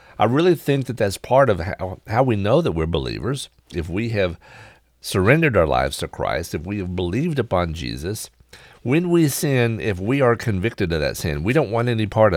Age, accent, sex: 50-69, American, male